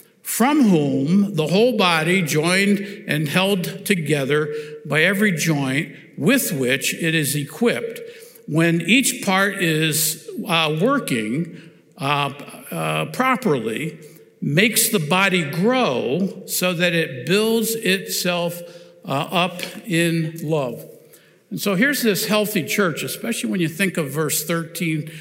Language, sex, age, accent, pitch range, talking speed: English, male, 50-69, American, 155-210 Hz, 125 wpm